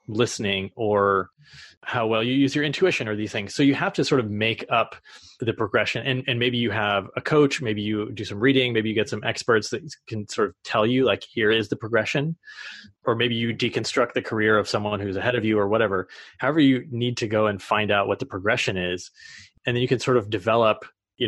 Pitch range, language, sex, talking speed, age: 105-125 Hz, English, male, 235 wpm, 20-39